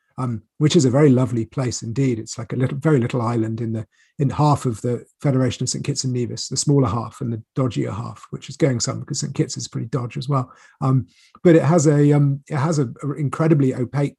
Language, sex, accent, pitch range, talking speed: English, male, British, 125-150 Hz, 235 wpm